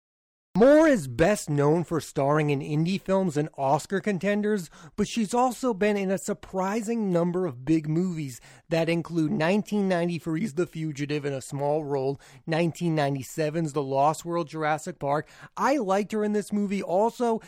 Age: 30-49